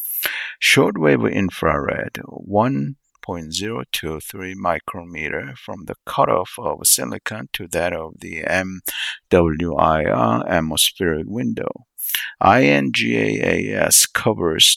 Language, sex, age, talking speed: English, male, 60-79, 80 wpm